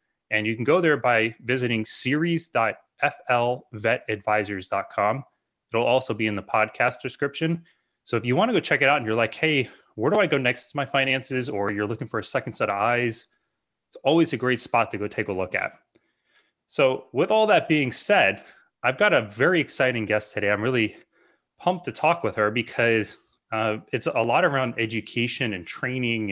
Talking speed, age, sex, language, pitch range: 195 wpm, 20-39, male, English, 110-130 Hz